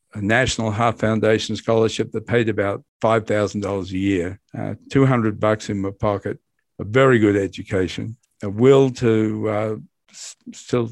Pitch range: 105-115 Hz